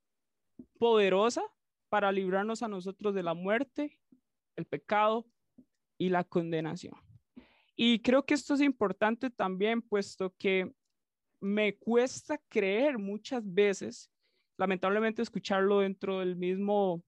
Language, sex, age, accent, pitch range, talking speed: Spanish, male, 20-39, Colombian, 195-240 Hz, 110 wpm